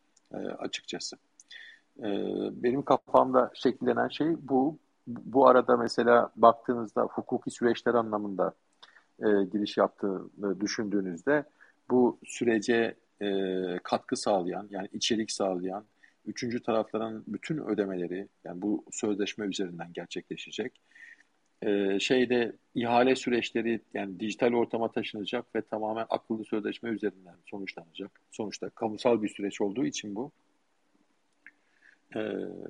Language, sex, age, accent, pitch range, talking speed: Turkish, male, 50-69, native, 100-120 Hz, 95 wpm